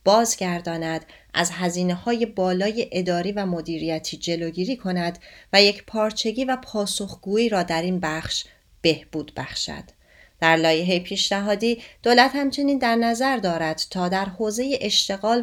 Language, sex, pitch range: Persian, female, 165-220 Hz